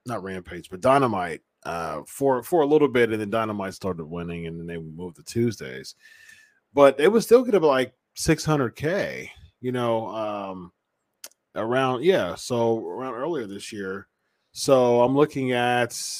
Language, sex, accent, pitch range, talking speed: English, male, American, 110-135 Hz, 165 wpm